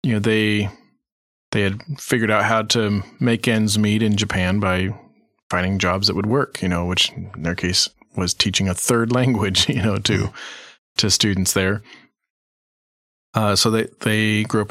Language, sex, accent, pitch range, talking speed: English, male, American, 95-115 Hz, 175 wpm